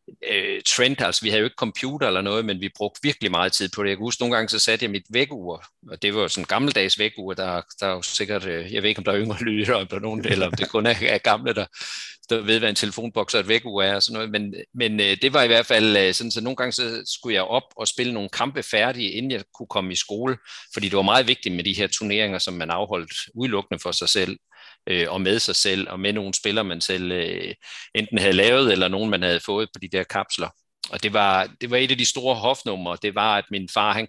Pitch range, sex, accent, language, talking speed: 95-115 Hz, male, native, Danish, 265 wpm